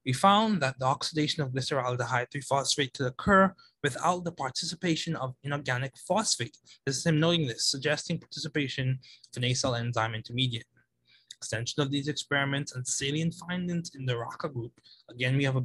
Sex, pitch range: male, 125-165 Hz